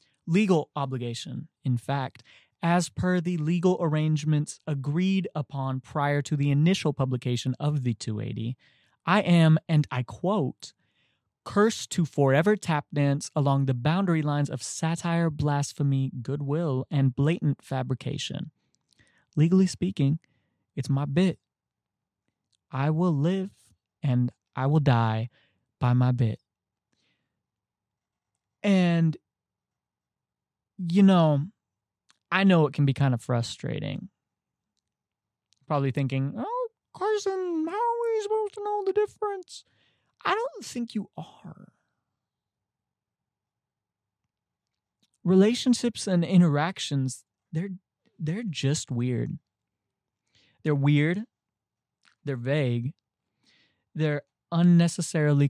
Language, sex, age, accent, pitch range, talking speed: English, male, 20-39, American, 135-180 Hz, 105 wpm